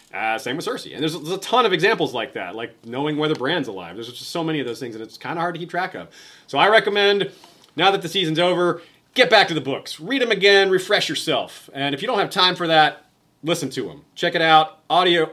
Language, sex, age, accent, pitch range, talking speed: English, male, 30-49, American, 135-170 Hz, 265 wpm